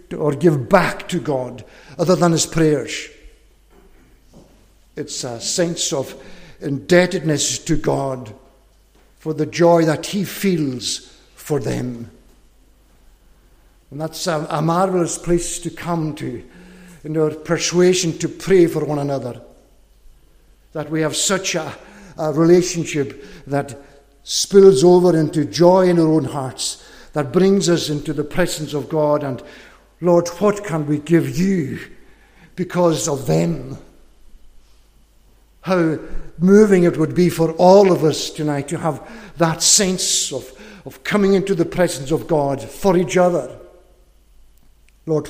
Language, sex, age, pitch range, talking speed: English, male, 60-79, 150-175 Hz, 130 wpm